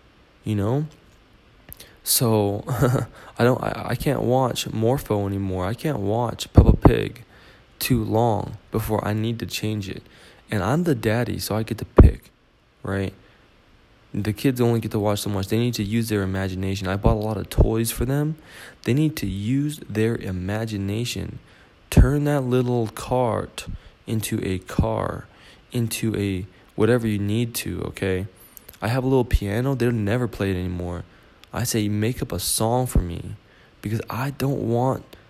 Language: English